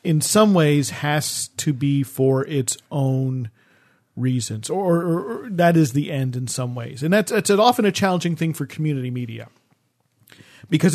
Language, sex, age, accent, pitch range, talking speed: English, male, 40-59, American, 125-170 Hz, 170 wpm